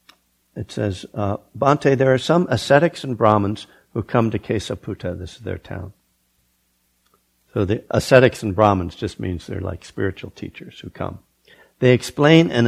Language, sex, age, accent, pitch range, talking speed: English, male, 60-79, American, 90-130 Hz, 160 wpm